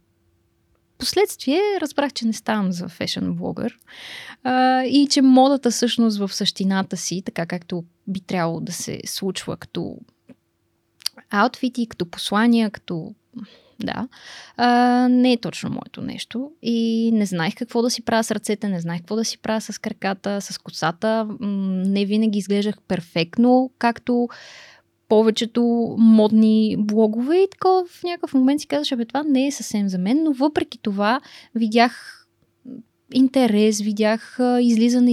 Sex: female